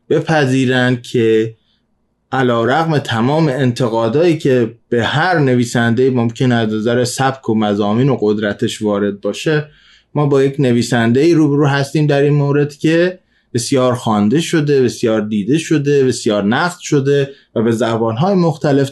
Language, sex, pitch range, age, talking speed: Persian, male, 115-145 Hz, 20-39, 130 wpm